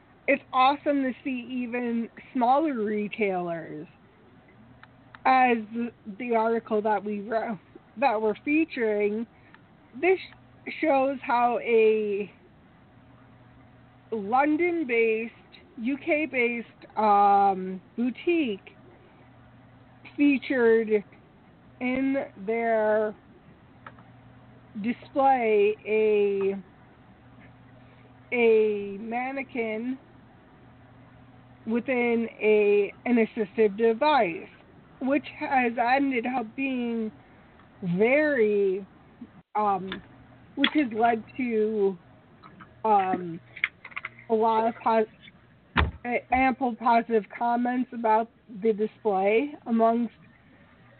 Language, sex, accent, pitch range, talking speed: English, female, American, 195-255 Hz, 65 wpm